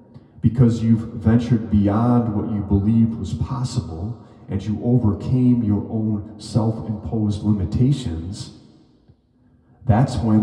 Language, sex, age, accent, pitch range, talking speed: English, male, 40-59, American, 100-120 Hz, 105 wpm